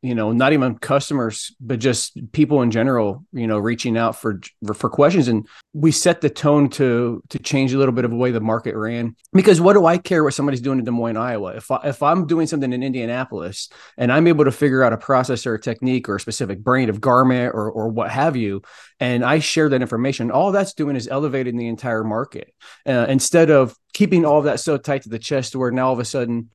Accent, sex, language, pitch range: American, male, English, 115-140 Hz